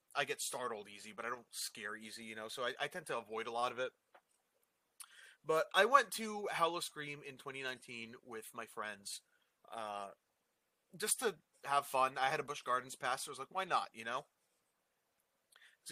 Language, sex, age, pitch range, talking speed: English, male, 30-49, 120-175 Hz, 200 wpm